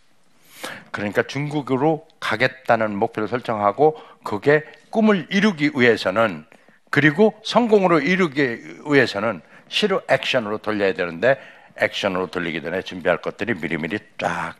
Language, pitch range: Korean, 95-155 Hz